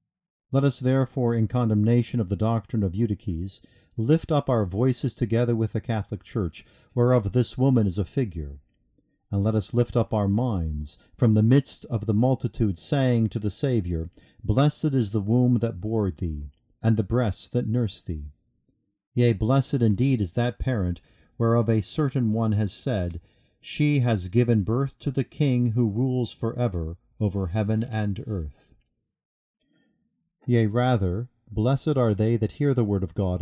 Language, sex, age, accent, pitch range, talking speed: English, male, 50-69, American, 100-125 Hz, 165 wpm